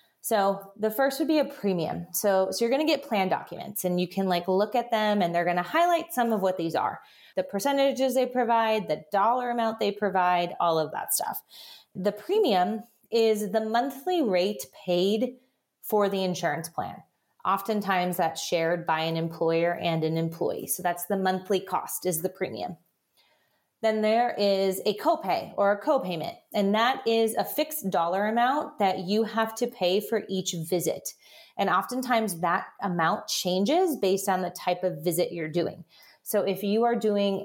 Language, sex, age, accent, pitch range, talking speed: English, female, 30-49, American, 180-225 Hz, 185 wpm